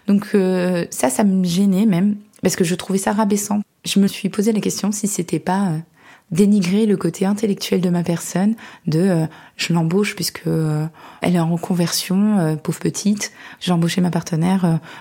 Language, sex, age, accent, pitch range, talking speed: French, female, 20-39, French, 165-200 Hz, 195 wpm